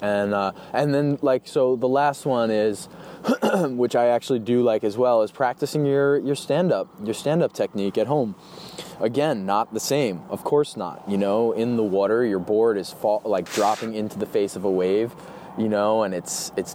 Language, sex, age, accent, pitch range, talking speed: English, male, 20-39, American, 100-125 Hz, 210 wpm